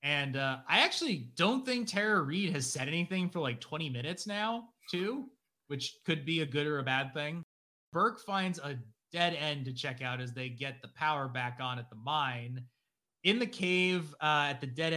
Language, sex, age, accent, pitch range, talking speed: English, male, 30-49, American, 130-160 Hz, 205 wpm